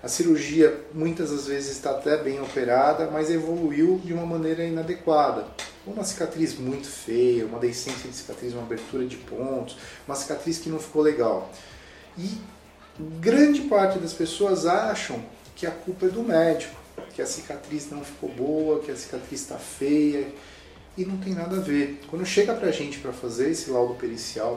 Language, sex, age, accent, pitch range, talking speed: Portuguese, male, 40-59, Brazilian, 130-180 Hz, 175 wpm